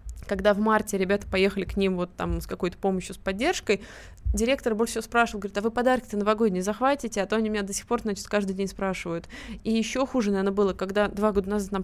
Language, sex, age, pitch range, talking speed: Russian, female, 20-39, 190-220 Hz, 230 wpm